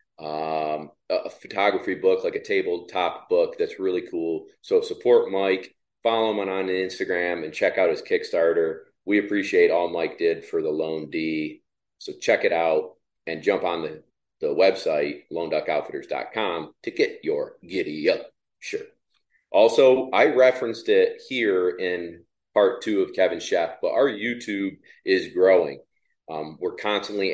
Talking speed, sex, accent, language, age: 155 wpm, male, American, English, 40-59